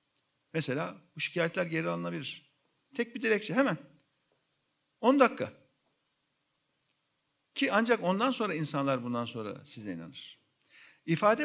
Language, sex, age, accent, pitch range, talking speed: Turkish, male, 50-69, native, 145-220 Hz, 110 wpm